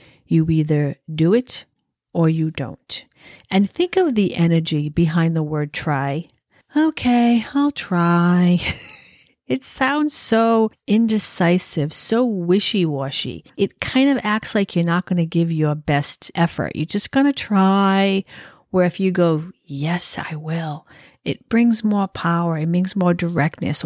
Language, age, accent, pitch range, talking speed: English, 50-69, American, 160-215 Hz, 145 wpm